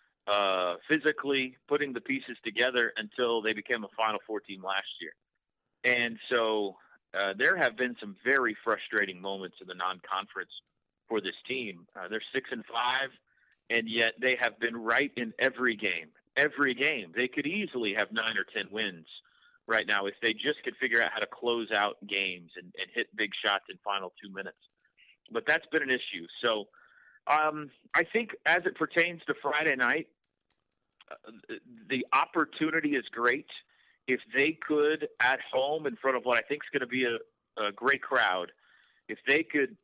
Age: 40-59